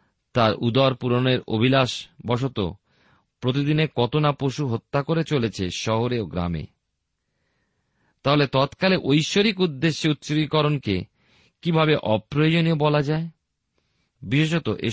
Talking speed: 105 wpm